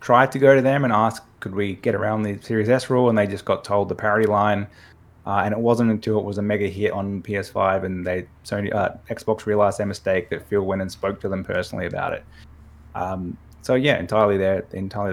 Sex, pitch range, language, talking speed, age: male, 100-125 Hz, English, 235 wpm, 20-39